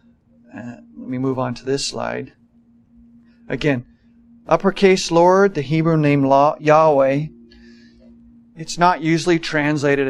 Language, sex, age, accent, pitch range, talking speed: English, male, 40-59, American, 130-160 Hz, 115 wpm